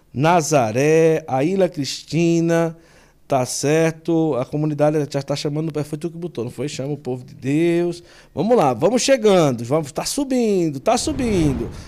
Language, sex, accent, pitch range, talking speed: Portuguese, male, Brazilian, 125-165 Hz, 155 wpm